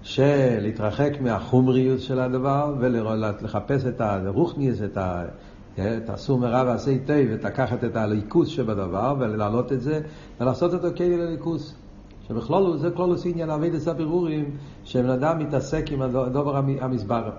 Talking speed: 140 wpm